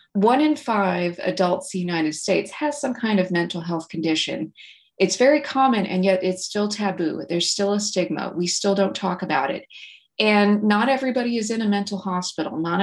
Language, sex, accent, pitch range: English, female, American, 165-205 Hz